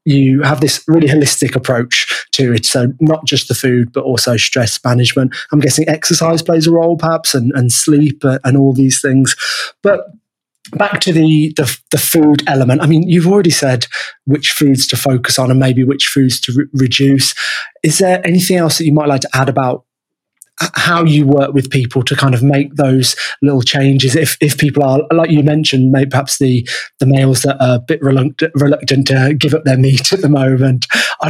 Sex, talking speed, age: male, 205 wpm, 20-39